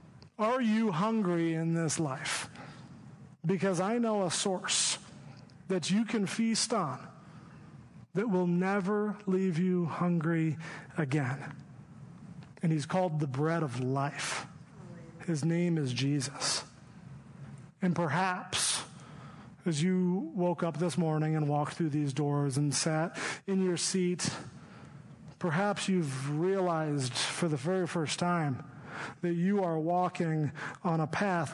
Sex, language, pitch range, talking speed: male, English, 150-185 Hz, 125 wpm